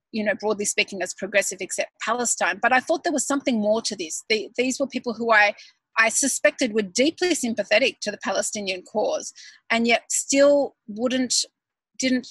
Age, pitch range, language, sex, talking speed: 30-49, 210-275 Hz, English, female, 180 wpm